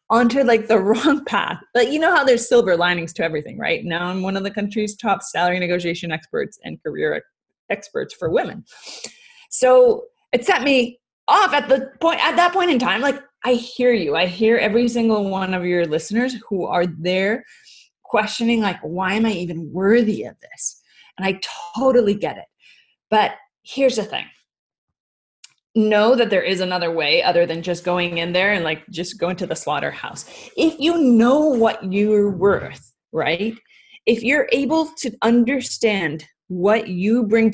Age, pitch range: 20-39, 185-255 Hz